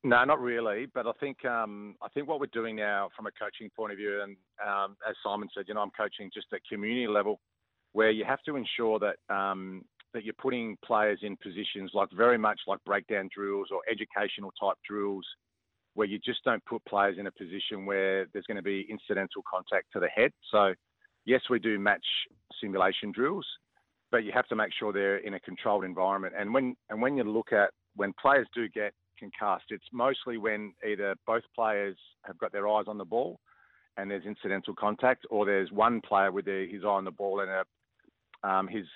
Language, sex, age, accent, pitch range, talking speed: English, male, 40-59, Australian, 95-110 Hz, 210 wpm